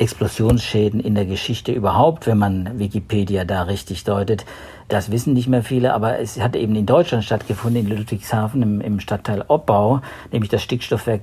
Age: 50-69